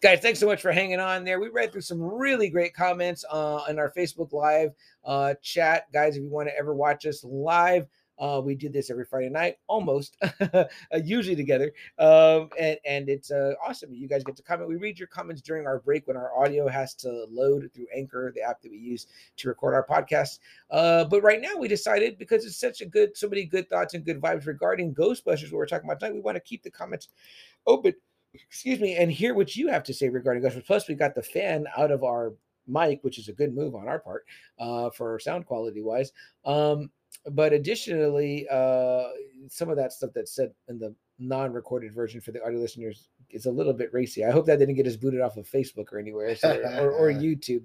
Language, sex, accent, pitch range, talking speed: English, male, American, 130-180 Hz, 225 wpm